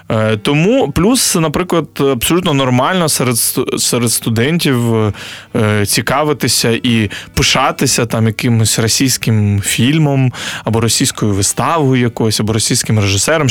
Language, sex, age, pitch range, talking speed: Ukrainian, male, 20-39, 115-150 Hz, 105 wpm